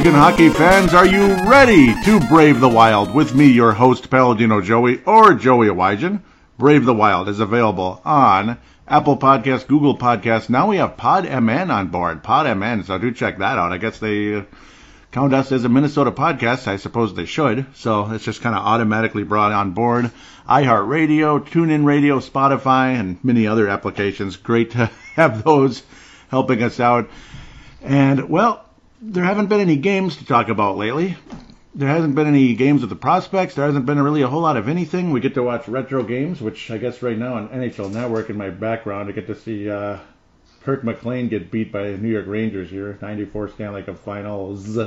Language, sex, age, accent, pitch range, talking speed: English, male, 50-69, American, 105-140 Hz, 195 wpm